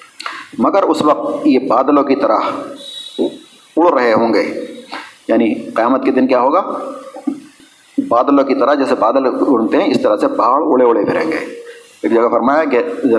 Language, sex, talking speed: Urdu, male, 170 wpm